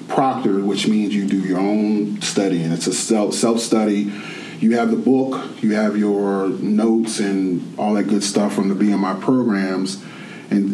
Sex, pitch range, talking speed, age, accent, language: male, 100-115 Hz, 170 wpm, 30-49, American, English